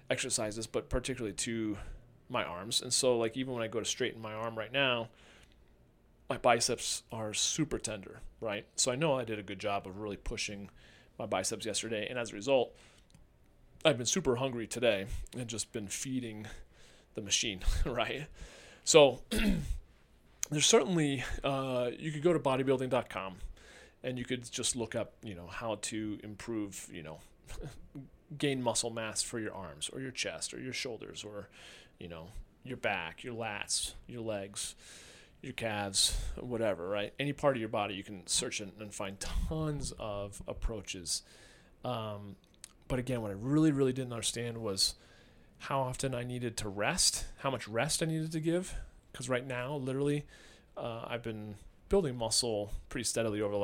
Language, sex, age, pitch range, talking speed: English, male, 30-49, 100-130 Hz, 170 wpm